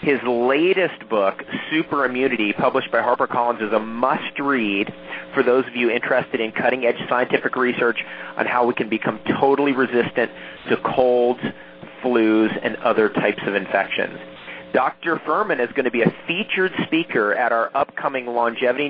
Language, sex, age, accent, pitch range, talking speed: English, male, 30-49, American, 105-130 Hz, 150 wpm